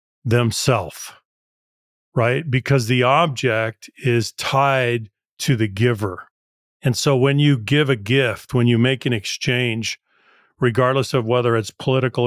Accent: American